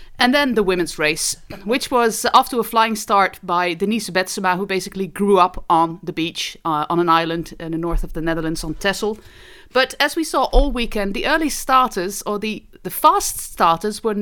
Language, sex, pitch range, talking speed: English, female, 170-215 Hz, 205 wpm